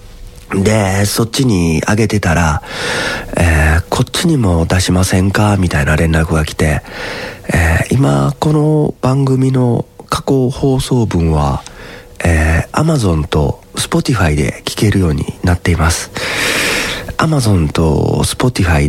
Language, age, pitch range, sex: Japanese, 40-59, 85-120 Hz, male